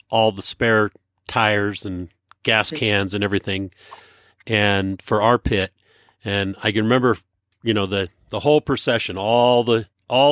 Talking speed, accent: 150 wpm, American